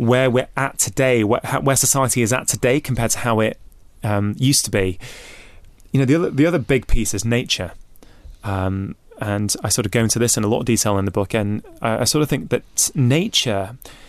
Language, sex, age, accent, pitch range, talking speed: English, male, 20-39, British, 105-140 Hz, 215 wpm